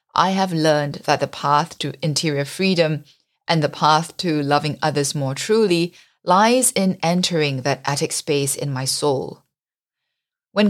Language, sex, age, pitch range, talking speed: English, female, 30-49, 140-170 Hz, 150 wpm